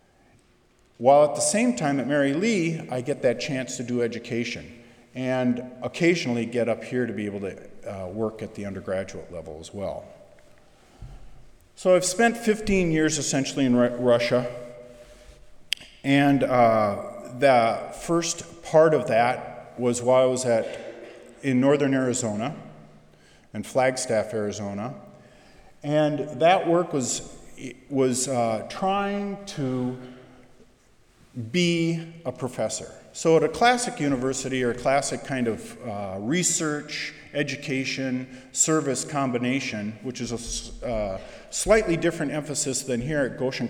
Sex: male